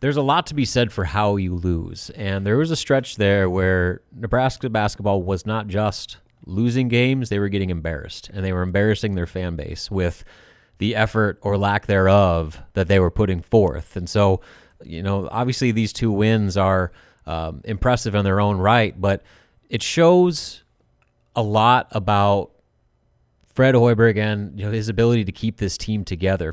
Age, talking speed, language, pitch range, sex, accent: 30-49, 180 wpm, English, 95-115 Hz, male, American